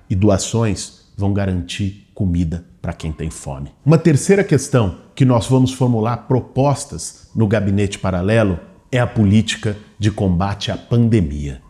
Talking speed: 140 wpm